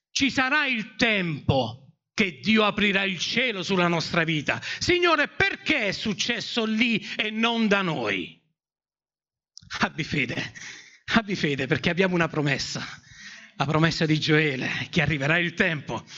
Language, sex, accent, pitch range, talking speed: Italian, male, native, 190-275 Hz, 140 wpm